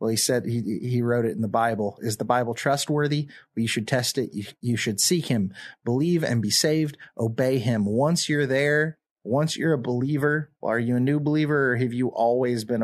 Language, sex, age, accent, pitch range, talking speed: English, male, 30-49, American, 115-150 Hz, 225 wpm